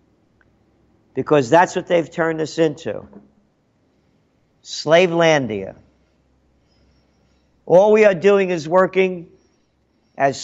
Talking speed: 85 wpm